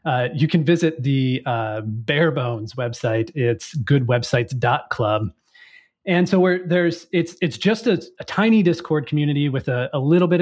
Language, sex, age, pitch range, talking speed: English, male, 30-49, 120-160 Hz, 160 wpm